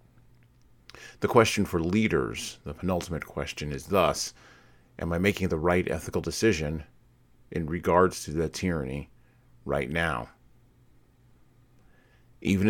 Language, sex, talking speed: English, male, 115 wpm